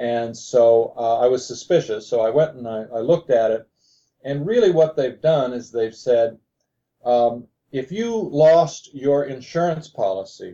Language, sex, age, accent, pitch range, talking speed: English, male, 50-69, American, 115-150 Hz, 170 wpm